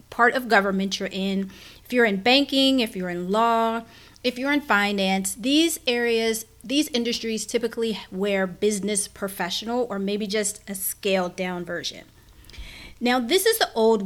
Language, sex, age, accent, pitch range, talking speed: English, female, 30-49, American, 195-245 Hz, 160 wpm